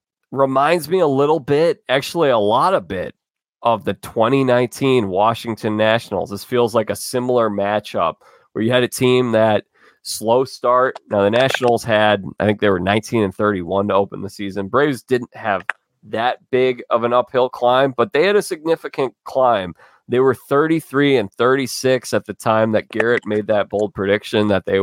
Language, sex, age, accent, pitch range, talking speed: English, male, 20-39, American, 105-130 Hz, 180 wpm